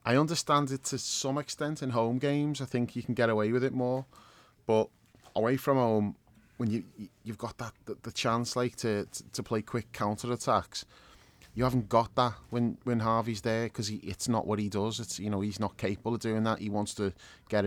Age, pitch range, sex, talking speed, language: 30-49, 105-125 Hz, male, 215 wpm, English